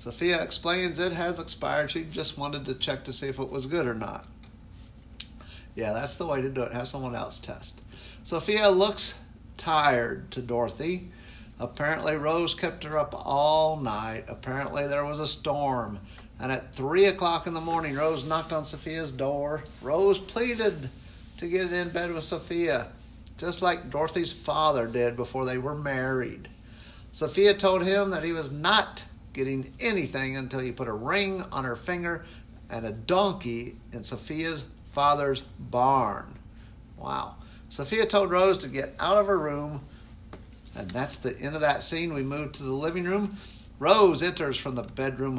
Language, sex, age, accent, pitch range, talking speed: English, male, 50-69, American, 120-165 Hz, 170 wpm